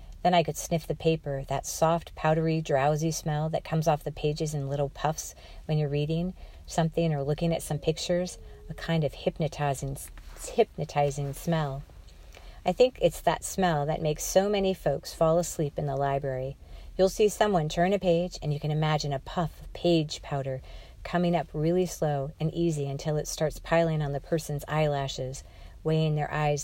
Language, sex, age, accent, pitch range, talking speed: English, female, 40-59, American, 140-165 Hz, 180 wpm